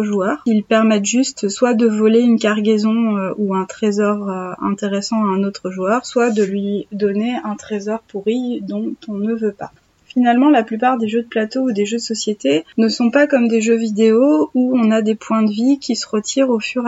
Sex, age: female, 20-39